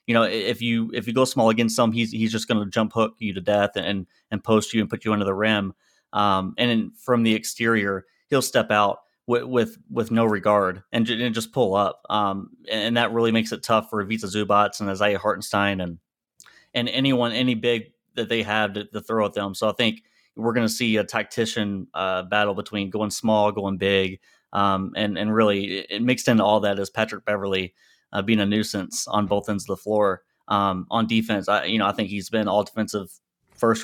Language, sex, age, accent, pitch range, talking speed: English, male, 30-49, American, 100-115 Hz, 220 wpm